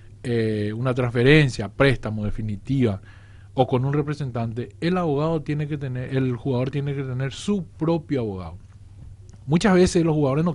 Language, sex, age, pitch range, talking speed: English, male, 40-59, 110-175 Hz, 150 wpm